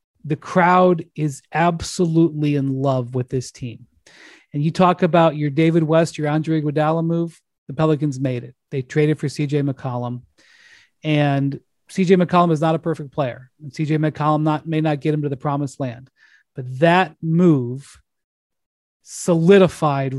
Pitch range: 140-170 Hz